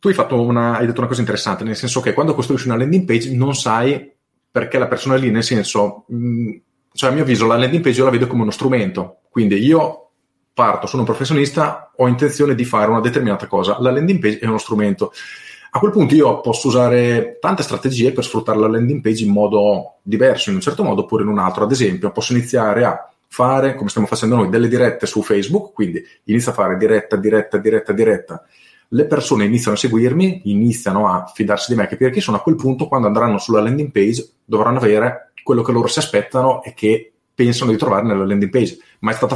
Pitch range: 110-130 Hz